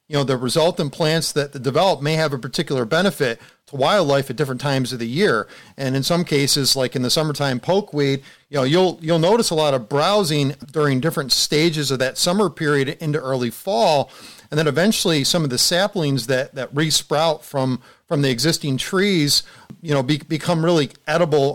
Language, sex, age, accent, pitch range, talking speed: English, male, 40-59, American, 135-170 Hz, 190 wpm